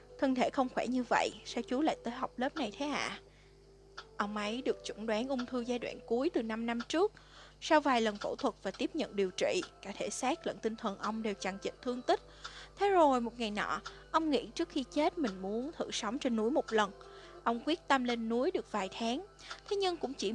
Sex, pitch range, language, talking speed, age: female, 220-300 Hz, Vietnamese, 240 wpm, 20-39